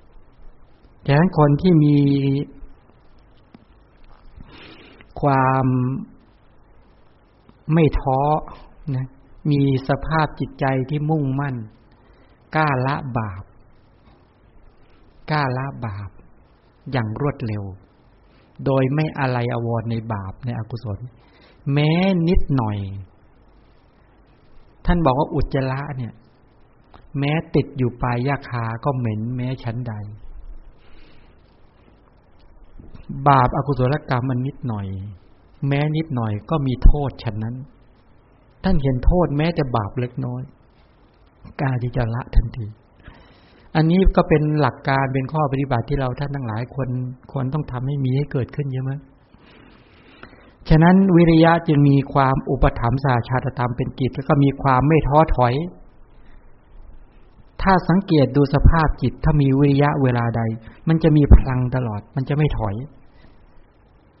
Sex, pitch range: male, 120-145 Hz